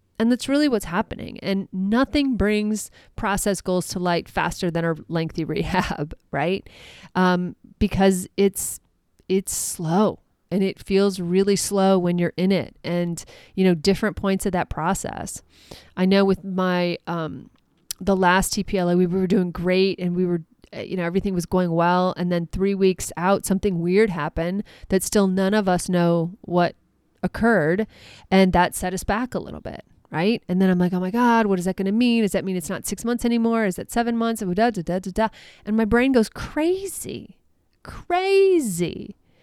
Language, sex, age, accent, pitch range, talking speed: English, female, 30-49, American, 180-215 Hz, 175 wpm